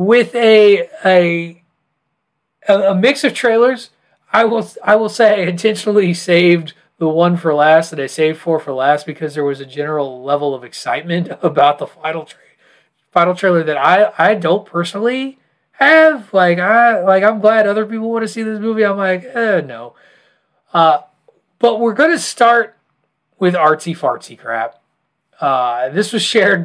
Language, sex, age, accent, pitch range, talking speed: English, male, 30-49, American, 160-220 Hz, 165 wpm